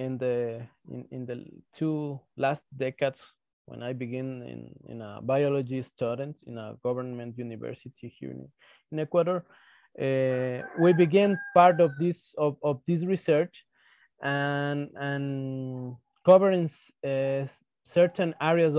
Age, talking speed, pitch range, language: 20-39, 125 wpm, 130-165 Hz, English